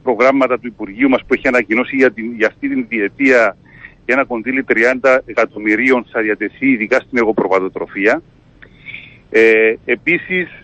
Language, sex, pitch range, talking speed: Greek, male, 120-195 Hz, 135 wpm